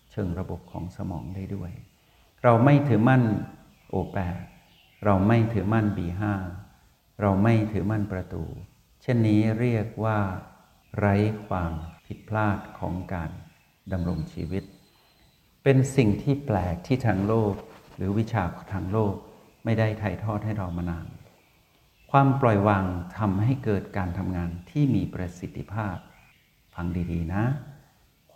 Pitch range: 90-110 Hz